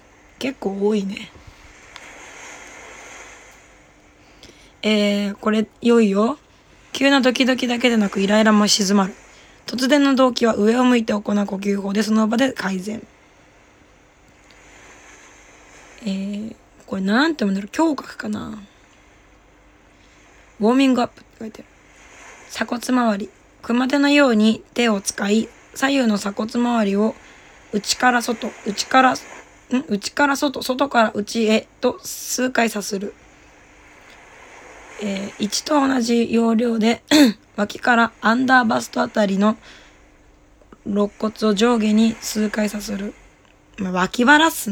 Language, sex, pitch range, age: Japanese, female, 205-250 Hz, 20-39